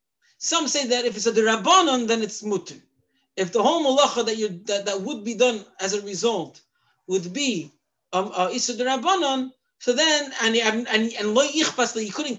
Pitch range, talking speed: 210-295 Hz, 175 wpm